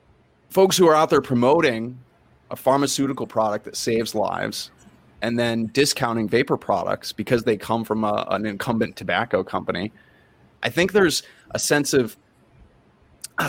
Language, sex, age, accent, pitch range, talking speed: English, male, 20-39, American, 110-140 Hz, 140 wpm